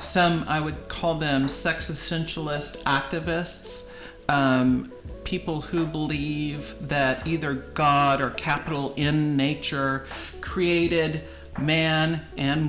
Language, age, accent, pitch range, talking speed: English, 40-59, American, 135-160 Hz, 105 wpm